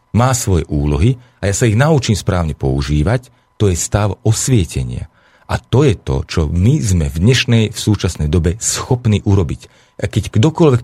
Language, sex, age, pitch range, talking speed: Slovak, male, 40-59, 90-125 Hz, 170 wpm